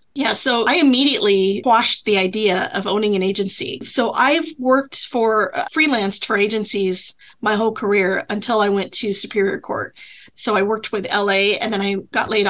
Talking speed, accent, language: 180 wpm, American, English